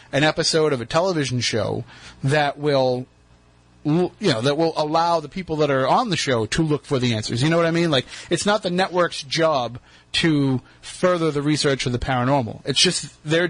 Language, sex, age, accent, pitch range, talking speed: English, male, 30-49, American, 125-160 Hz, 220 wpm